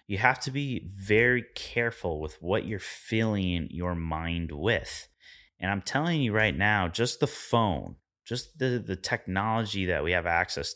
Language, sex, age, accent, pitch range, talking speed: English, male, 30-49, American, 75-105 Hz, 165 wpm